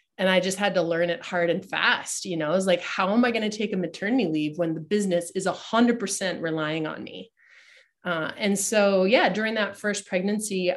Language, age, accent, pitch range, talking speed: English, 30-49, American, 175-210 Hz, 235 wpm